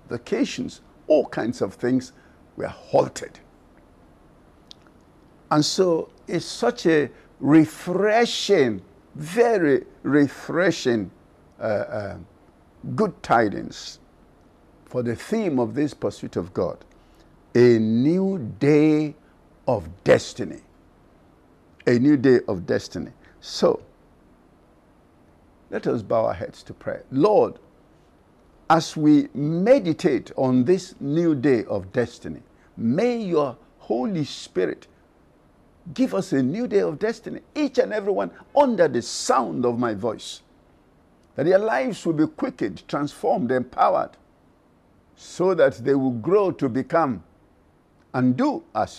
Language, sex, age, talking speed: English, male, 60-79, 115 wpm